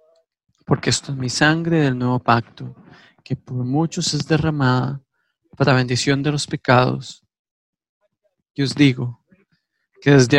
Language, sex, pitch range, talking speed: English, male, 125-150 Hz, 135 wpm